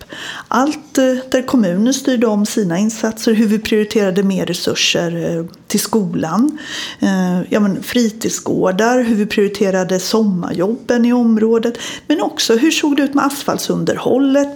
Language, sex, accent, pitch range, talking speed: Swedish, female, native, 205-245 Hz, 130 wpm